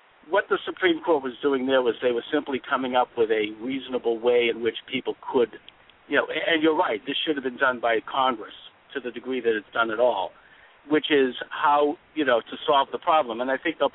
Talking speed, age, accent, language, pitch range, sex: 230 wpm, 60-79, American, English, 125-165 Hz, male